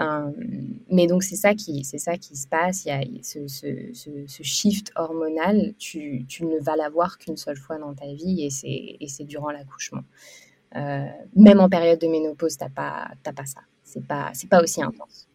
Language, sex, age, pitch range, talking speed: French, female, 20-39, 165-215 Hz, 205 wpm